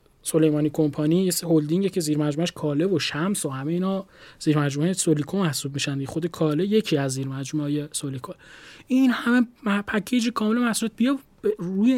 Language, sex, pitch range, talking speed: Persian, male, 155-200 Hz, 150 wpm